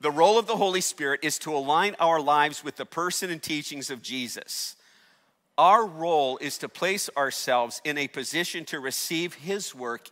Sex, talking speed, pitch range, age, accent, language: male, 185 wpm, 150-200 Hz, 50-69, American, English